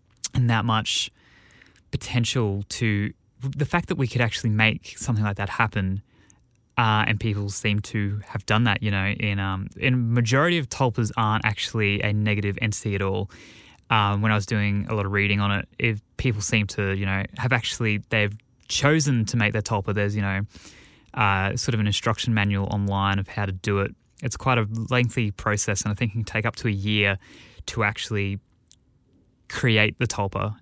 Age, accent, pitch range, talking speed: 10-29, Australian, 100-115 Hz, 195 wpm